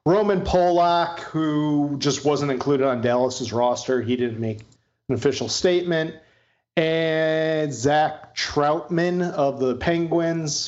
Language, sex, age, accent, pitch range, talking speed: English, male, 40-59, American, 120-145 Hz, 120 wpm